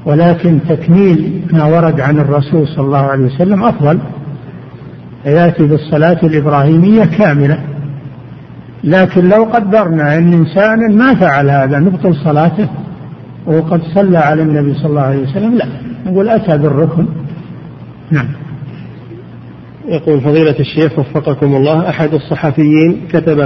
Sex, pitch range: male, 145-170 Hz